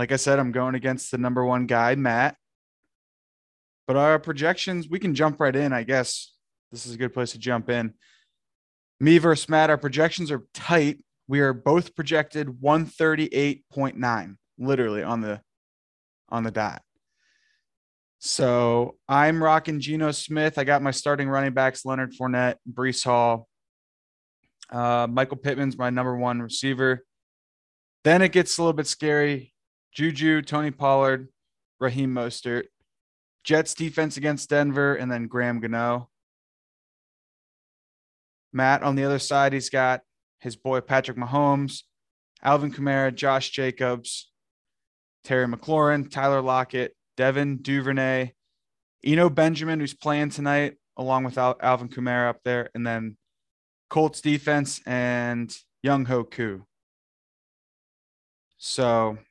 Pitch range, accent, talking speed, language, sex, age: 120-145 Hz, American, 130 wpm, English, male, 20-39